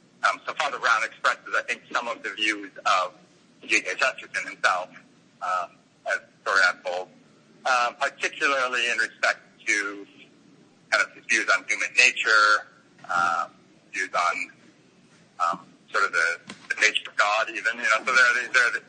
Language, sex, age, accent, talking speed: English, male, 40-59, American, 165 wpm